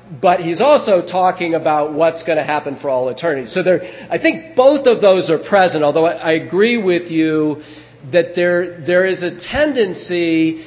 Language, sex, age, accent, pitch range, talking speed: English, male, 40-59, American, 145-180 Hz, 180 wpm